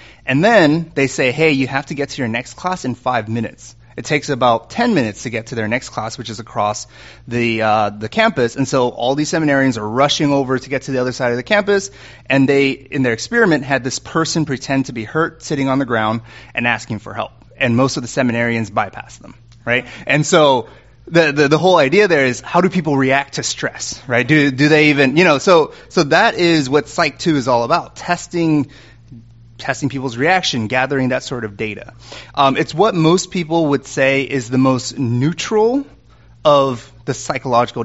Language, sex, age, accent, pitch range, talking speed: English, male, 30-49, American, 115-140 Hz, 210 wpm